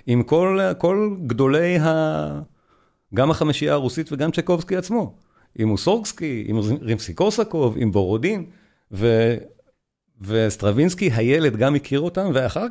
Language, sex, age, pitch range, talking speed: Hebrew, male, 40-59, 115-160 Hz, 120 wpm